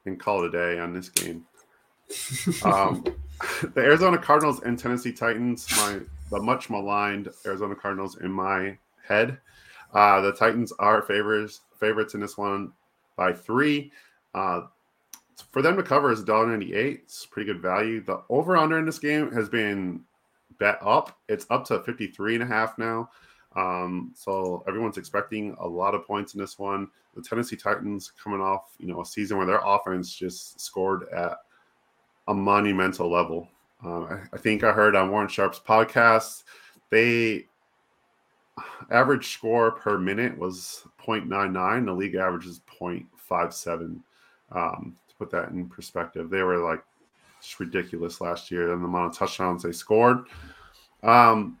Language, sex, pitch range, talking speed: English, male, 90-110 Hz, 160 wpm